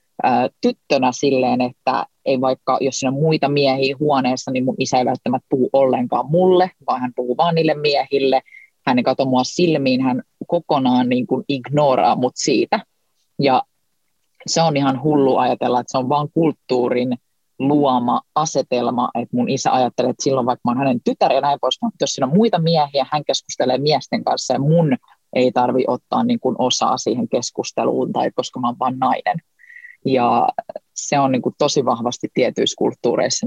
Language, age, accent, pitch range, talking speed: Finnish, 30-49, native, 125-170 Hz, 165 wpm